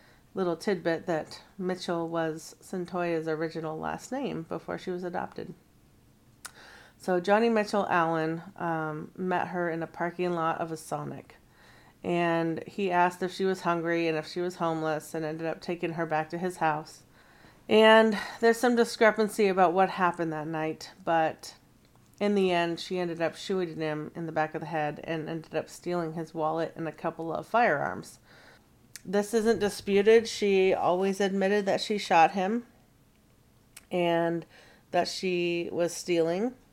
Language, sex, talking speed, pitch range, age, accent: English, female, 160 wpm, 160-190 Hz, 30-49, American